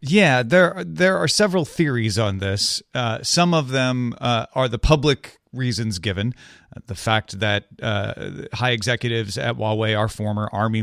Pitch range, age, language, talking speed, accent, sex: 105-130 Hz, 30-49, English, 165 wpm, American, male